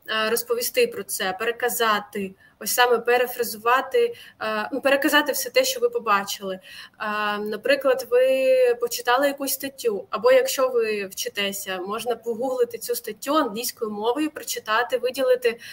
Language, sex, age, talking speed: Ukrainian, female, 20-39, 115 wpm